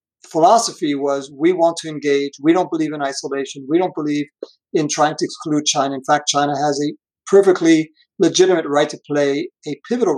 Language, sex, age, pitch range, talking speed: English, male, 50-69, 140-175 Hz, 185 wpm